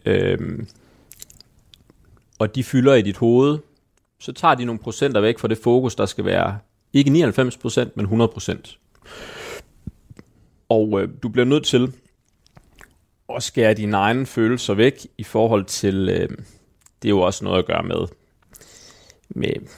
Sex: male